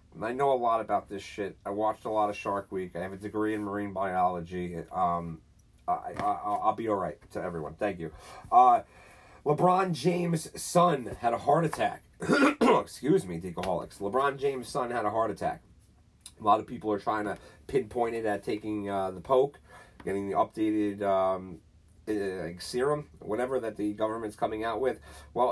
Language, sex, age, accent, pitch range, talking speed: English, male, 30-49, American, 100-125 Hz, 180 wpm